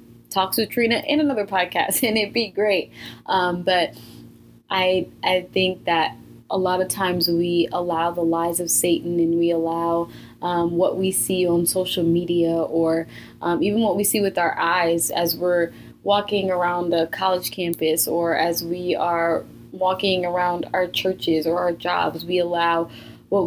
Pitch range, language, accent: 170-190 Hz, English, American